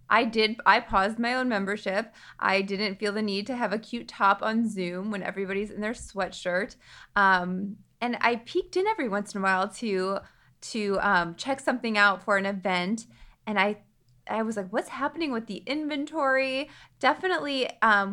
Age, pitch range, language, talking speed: 20-39, 195-235 Hz, English, 180 wpm